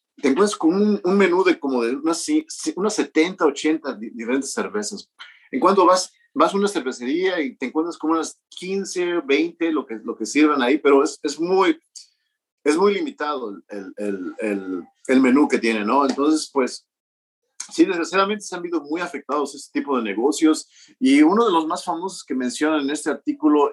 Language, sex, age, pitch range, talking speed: English, male, 50-69, 135-210 Hz, 185 wpm